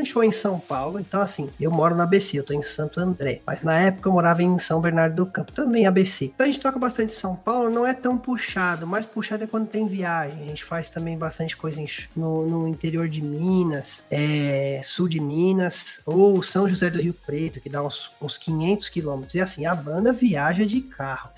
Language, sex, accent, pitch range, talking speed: Portuguese, male, Brazilian, 160-215 Hz, 220 wpm